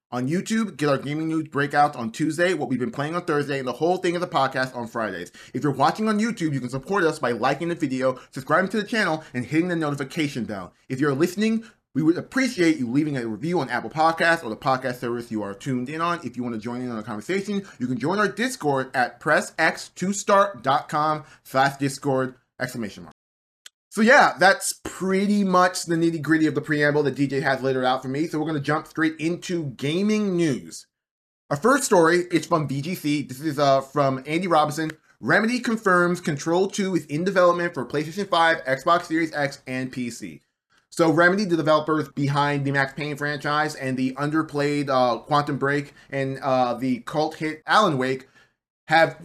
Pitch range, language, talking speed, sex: 130-175 Hz, English, 200 wpm, male